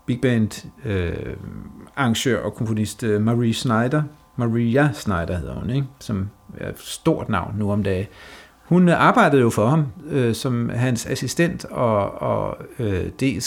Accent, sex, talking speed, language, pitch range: native, male, 150 wpm, Danish, 110-140 Hz